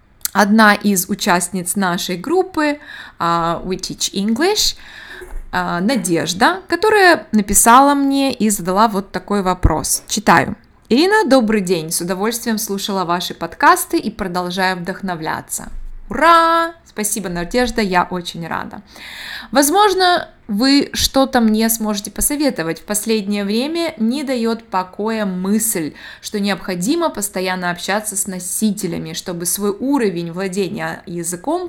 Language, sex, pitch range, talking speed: Russian, female, 185-250 Hz, 110 wpm